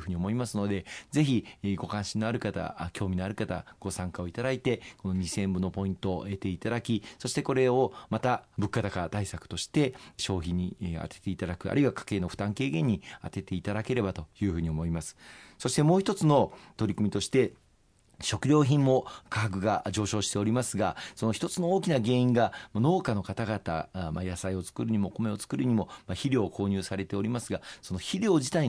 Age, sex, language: 40-59, male, Japanese